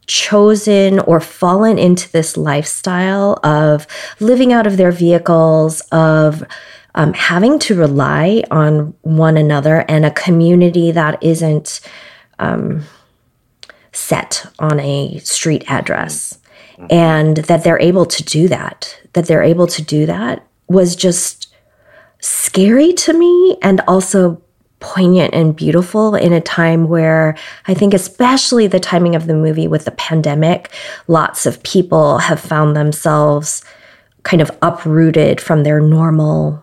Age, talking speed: 20-39, 135 wpm